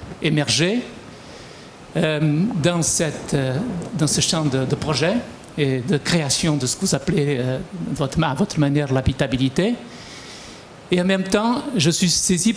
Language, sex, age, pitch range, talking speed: French, male, 60-79, 140-175 Hz, 140 wpm